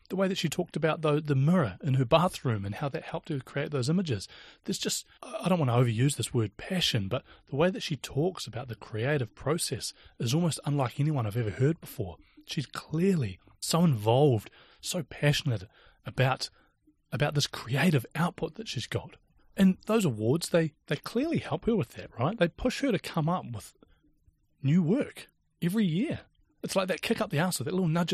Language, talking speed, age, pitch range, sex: English, 200 wpm, 30-49, 120-180 Hz, male